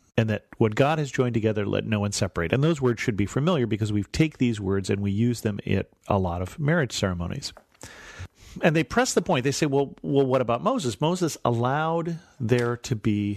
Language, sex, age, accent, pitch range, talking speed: English, male, 40-59, American, 105-130 Hz, 220 wpm